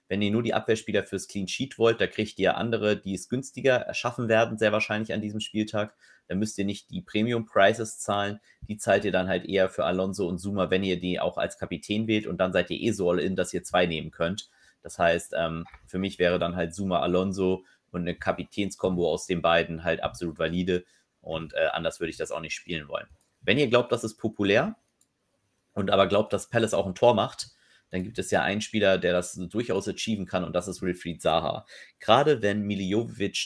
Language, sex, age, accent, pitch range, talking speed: German, male, 30-49, German, 90-105 Hz, 215 wpm